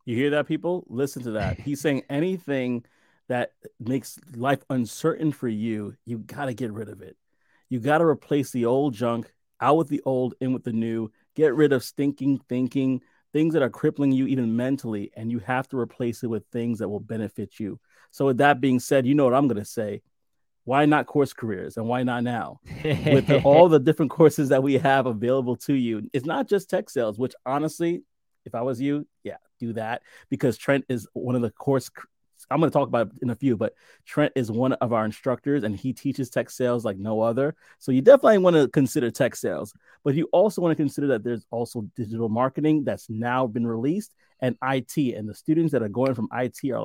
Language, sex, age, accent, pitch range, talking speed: English, male, 30-49, American, 120-145 Hz, 220 wpm